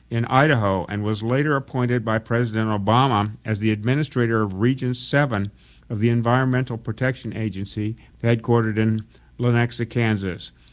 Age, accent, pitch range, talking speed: 50-69, American, 80-115 Hz, 135 wpm